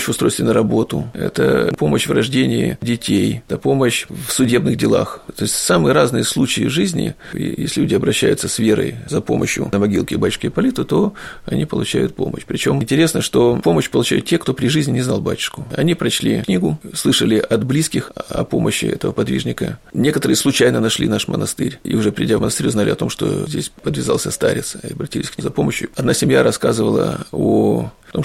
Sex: male